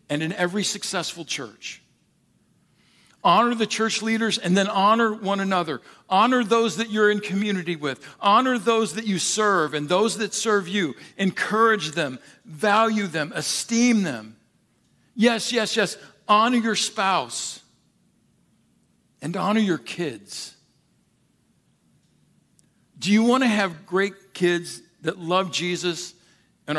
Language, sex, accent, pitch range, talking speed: English, male, American, 150-210 Hz, 130 wpm